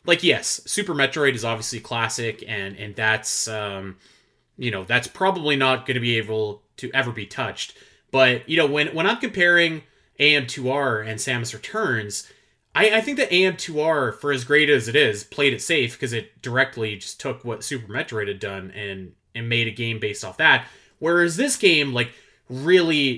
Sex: male